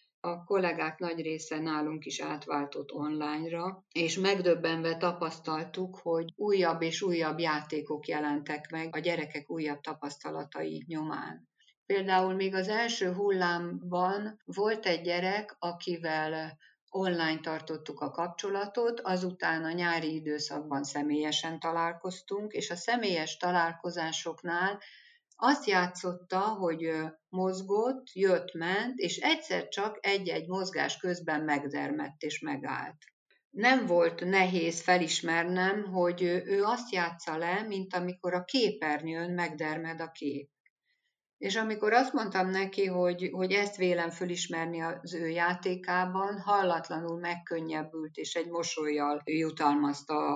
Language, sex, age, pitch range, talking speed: Hungarian, female, 50-69, 155-190 Hz, 115 wpm